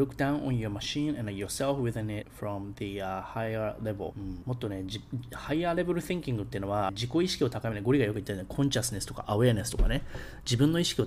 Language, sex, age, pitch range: Japanese, male, 20-39, 105-145 Hz